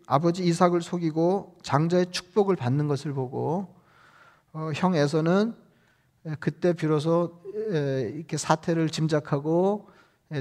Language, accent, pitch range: Korean, native, 145-175 Hz